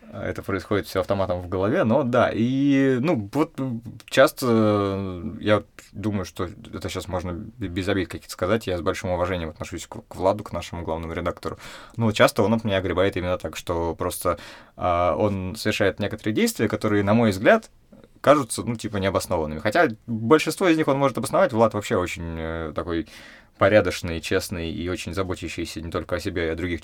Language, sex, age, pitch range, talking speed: Russian, male, 20-39, 90-110 Hz, 175 wpm